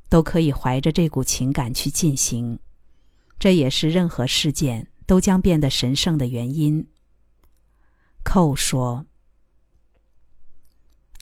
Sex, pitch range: female, 135-185 Hz